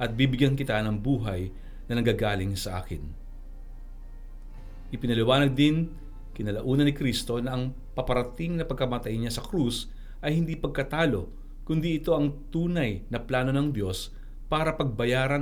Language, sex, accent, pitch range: Filipino, male, native, 110-140 Hz